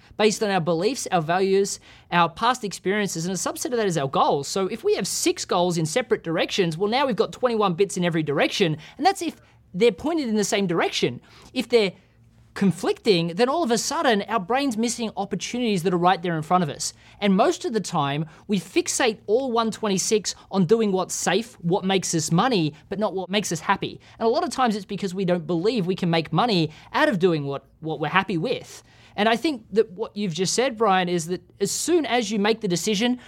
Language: English